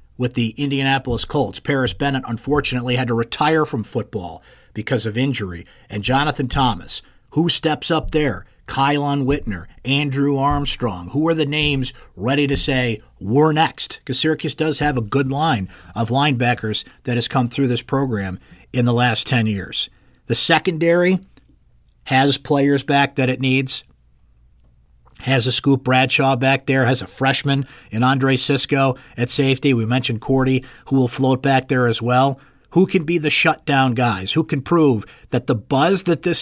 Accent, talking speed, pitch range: American, 165 wpm, 115-145 Hz